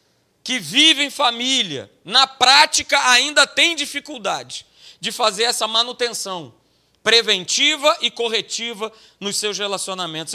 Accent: Brazilian